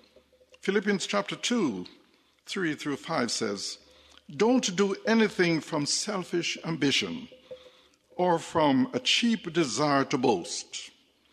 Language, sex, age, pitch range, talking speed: English, male, 60-79, 135-205 Hz, 105 wpm